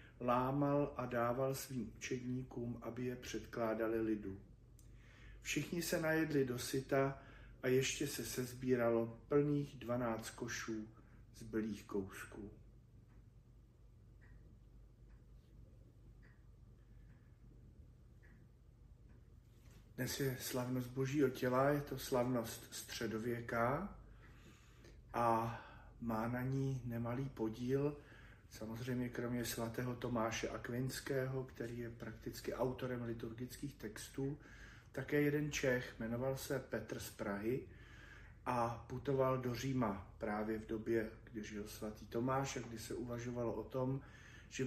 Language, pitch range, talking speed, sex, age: Slovak, 115-130 Hz, 100 wpm, male, 40-59